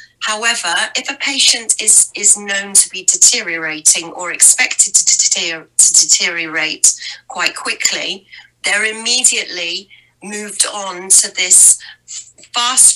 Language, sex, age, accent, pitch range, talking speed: English, female, 40-59, British, 185-230 Hz, 105 wpm